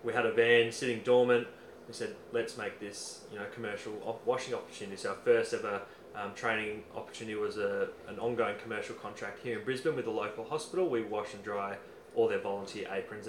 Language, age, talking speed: English, 20-39, 205 wpm